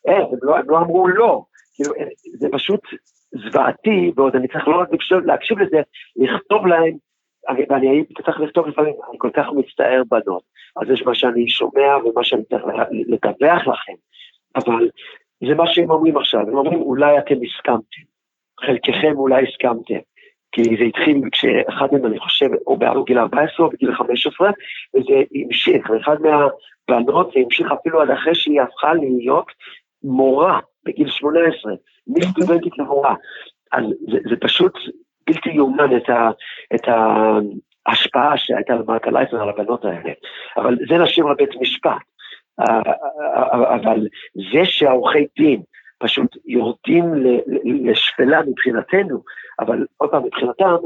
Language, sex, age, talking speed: Hebrew, male, 50-69, 135 wpm